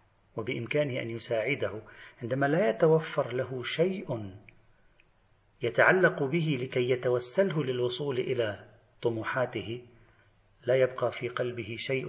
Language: Arabic